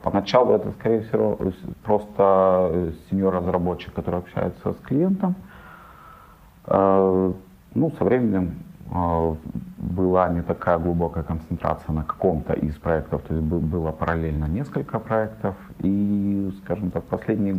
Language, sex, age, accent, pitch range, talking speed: Russian, male, 40-59, native, 80-95 Hz, 115 wpm